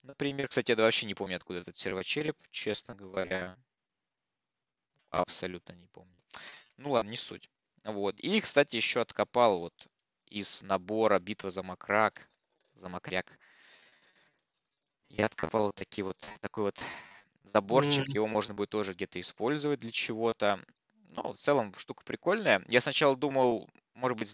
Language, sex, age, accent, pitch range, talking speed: Russian, male, 20-39, native, 95-120 Hz, 140 wpm